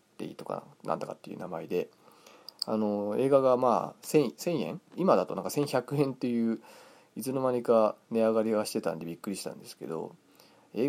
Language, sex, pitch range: Japanese, male, 105-130 Hz